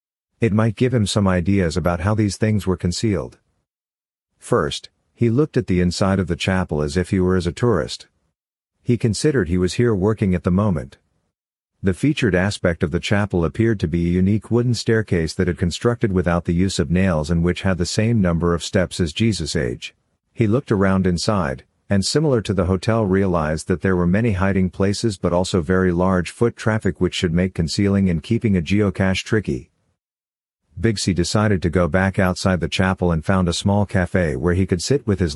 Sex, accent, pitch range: male, American, 90-110 Hz